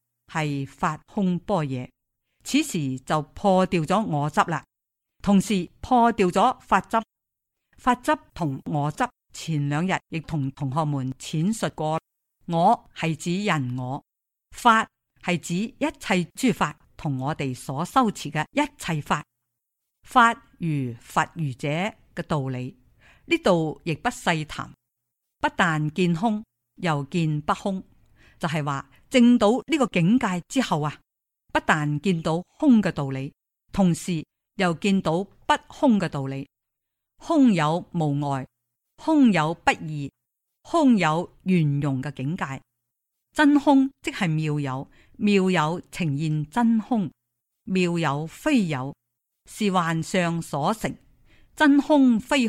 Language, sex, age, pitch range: Chinese, female, 50-69, 145-205 Hz